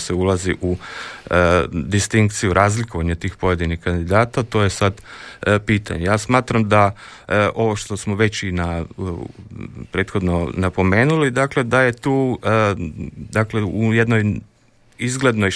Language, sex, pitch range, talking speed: Croatian, male, 90-110 Hz, 135 wpm